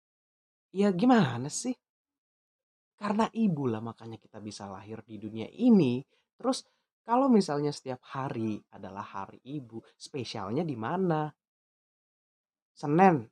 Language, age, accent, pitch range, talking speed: Indonesian, 20-39, native, 125-200 Hz, 110 wpm